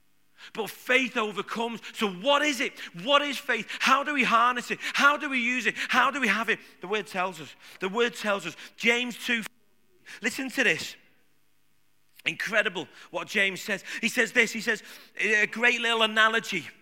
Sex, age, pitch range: male, 40-59, 190-245 Hz